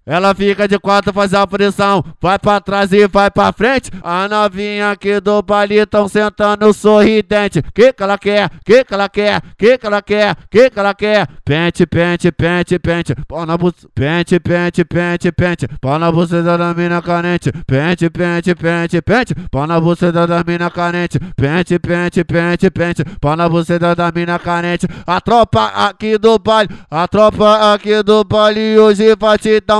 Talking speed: 180 wpm